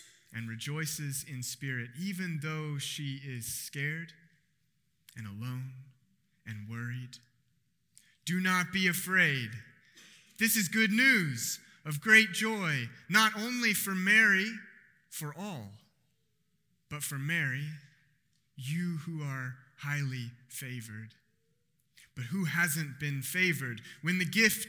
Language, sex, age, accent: English, male, 30-49, American